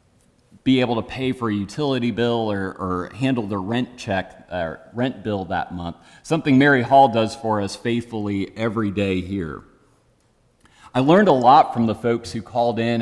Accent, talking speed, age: American, 180 wpm, 40-59